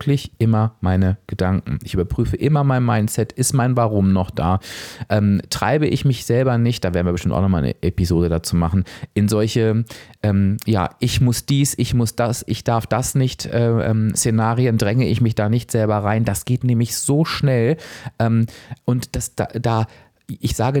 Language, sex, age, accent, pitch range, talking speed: German, male, 30-49, German, 95-120 Hz, 180 wpm